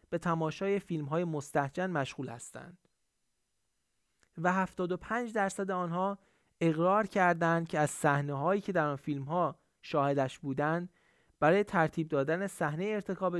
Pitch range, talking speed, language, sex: 140-185 Hz, 115 wpm, Persian, male